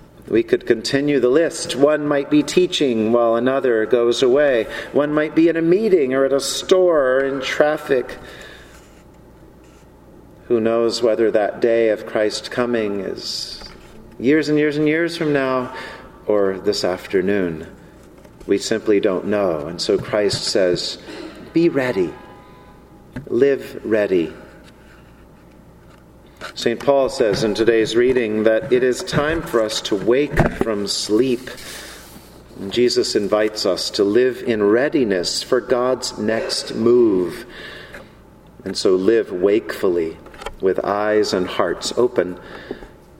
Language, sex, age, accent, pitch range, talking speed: English, male, 40-59, American, 115-165 Hz, 130 wpm